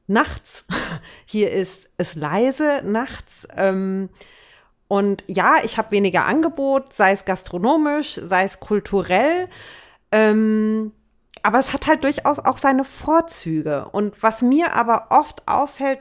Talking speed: 120 wpm